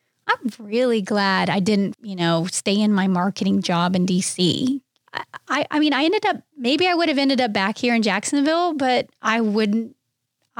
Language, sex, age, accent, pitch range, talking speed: English, female, 30-49, American, 195-235 Hz, 195 wpm